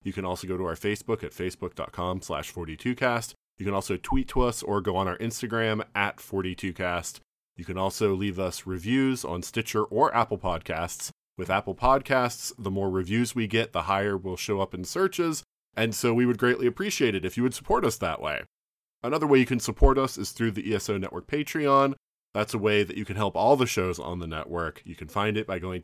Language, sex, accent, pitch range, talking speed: English, male, American, 95-125 Hz, 220 wpm